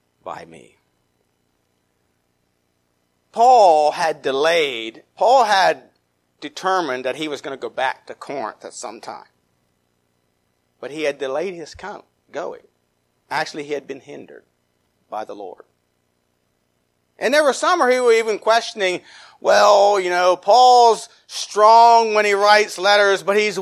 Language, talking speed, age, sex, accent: English, 135 wpm, 50-69, male, American